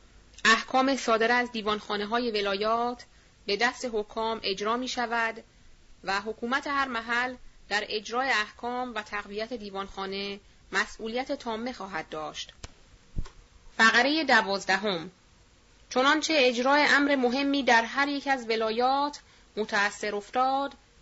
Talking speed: 110 wpm